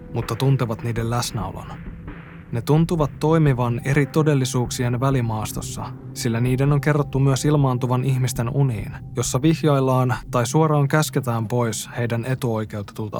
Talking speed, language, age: 120 wpm, Finnish, 20-39